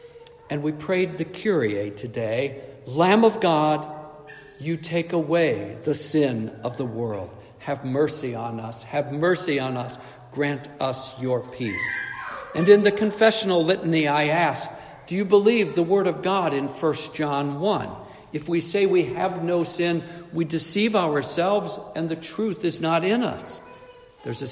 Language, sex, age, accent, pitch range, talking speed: English, male, 60-79, American, 130-170 Hz, 160 wpm